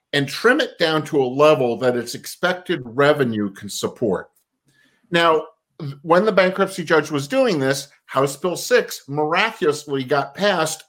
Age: 50-69